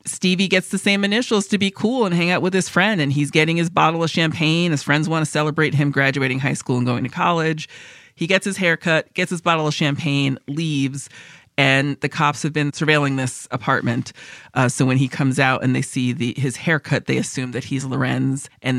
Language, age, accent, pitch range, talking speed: English, 30-49, American, 135-165 Hz, 225 wpm